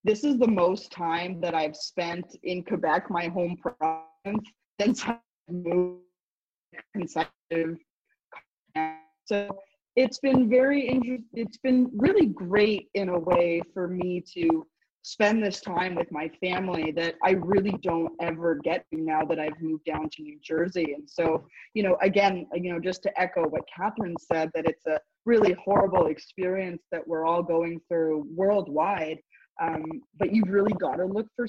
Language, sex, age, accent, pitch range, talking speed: English, female, 20-39, American, 165-205 Hz, 150 wpm